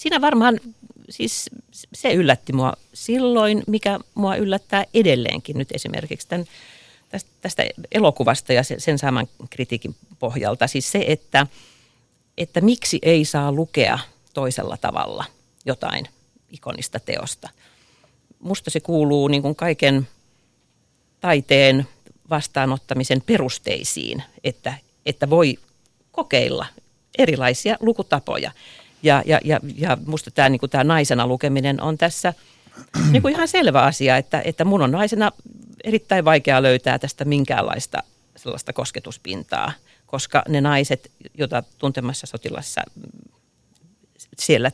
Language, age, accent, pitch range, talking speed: Finnish, 40-59, native, 130-165 Hz, 110 wpm